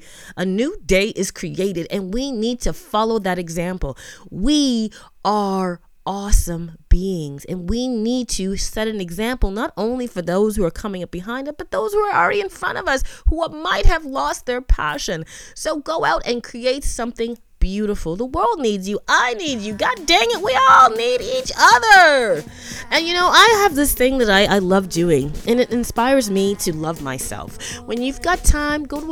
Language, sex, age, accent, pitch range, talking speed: English, female, 30-49, American, 175-270 Hz, 200 wpm